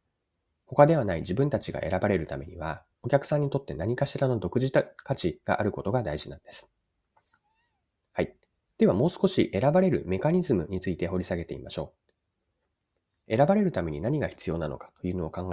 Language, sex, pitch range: Japanese, male, 90-150 Hz